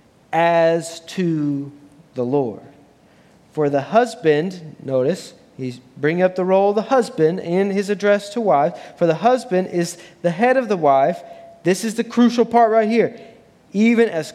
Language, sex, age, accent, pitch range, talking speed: English, male, 30-49, American, 165-225 Hz, 165 wpm